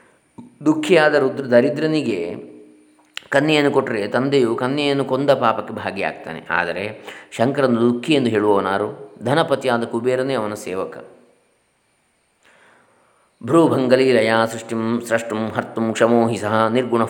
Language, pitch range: Kannada, 105-130 Hz